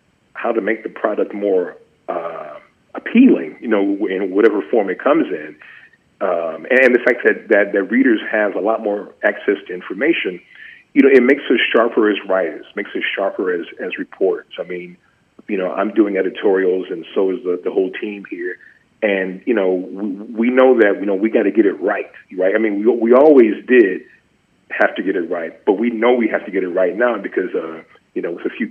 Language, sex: English, male